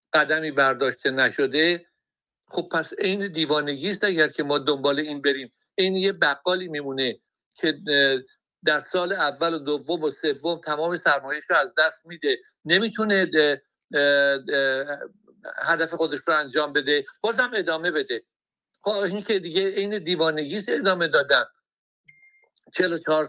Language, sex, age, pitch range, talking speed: Persian, male, 60-79, 140-190 Hz, 130 wpm